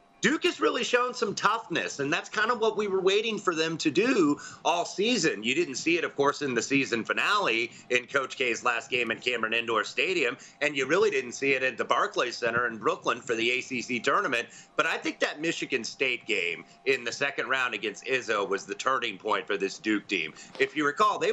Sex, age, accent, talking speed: male, 30-49, American, 225 wpm